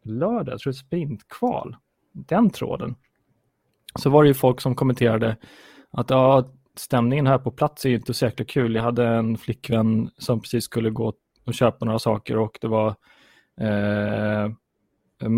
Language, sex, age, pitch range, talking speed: Swedish, male, 20-39, 110-130 Hz, 160 wpm